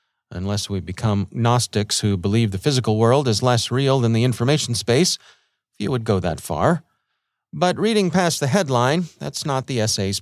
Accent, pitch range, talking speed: American, 110-135 Hz, 175 wpm